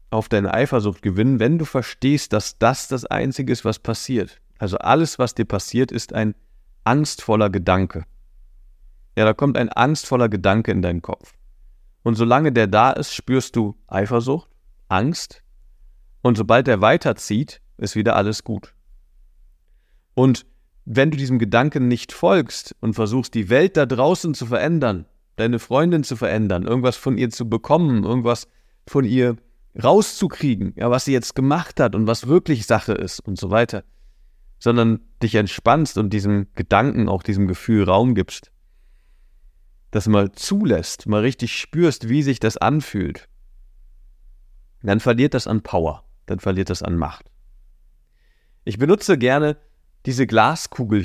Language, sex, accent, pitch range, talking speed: German, male, German, 100-130 Hz, 150 wpm